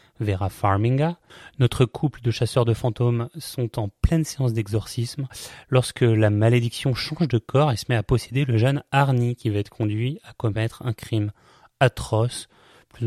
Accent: French